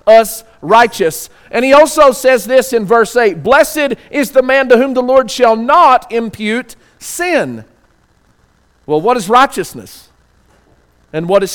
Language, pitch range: English, 180-235 Hz